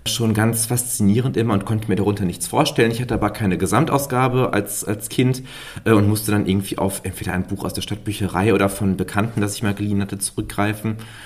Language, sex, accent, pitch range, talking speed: German, male, German, 95-115 Hz, 205 wpm